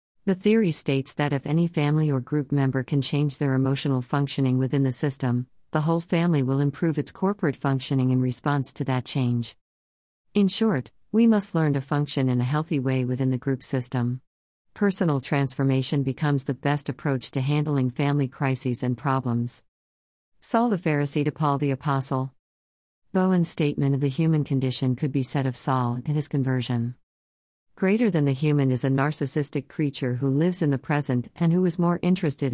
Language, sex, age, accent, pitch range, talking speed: English, female, 50-69, American, 130-155 Hz, 180 wpm